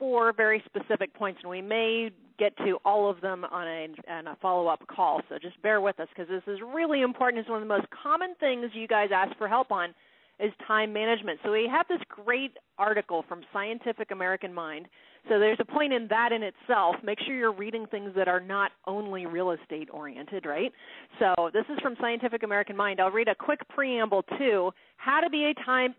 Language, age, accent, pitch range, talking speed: English, 30-49, American, 200-265 Hz, 210 wpm